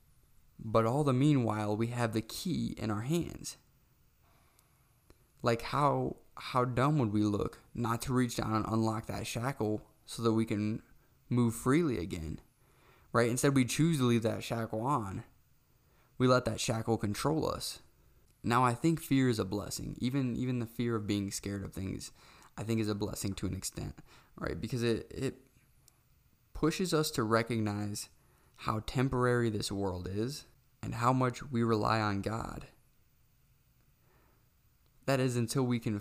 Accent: American